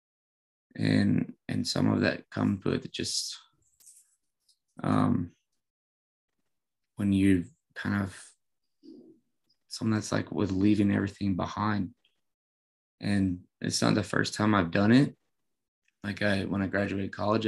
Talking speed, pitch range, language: 120 wpm, 95-105 Hz, English